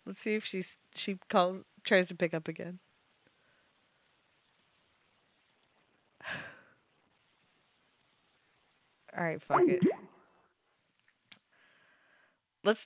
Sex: female